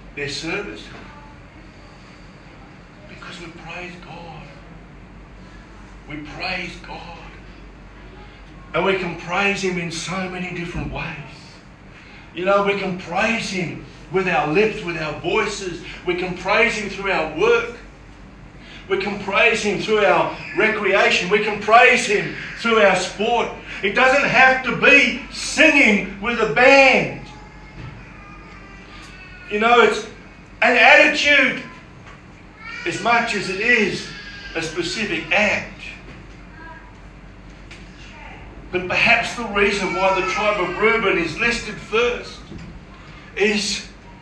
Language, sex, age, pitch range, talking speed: English, male, 50-69, 165-210 Hz, 120 wpm